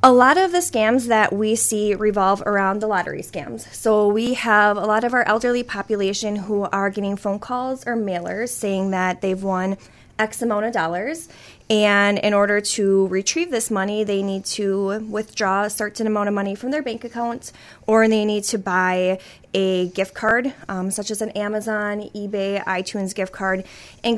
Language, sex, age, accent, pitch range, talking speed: English, female, 20-39, American, 195-230 Hz, 185 wpm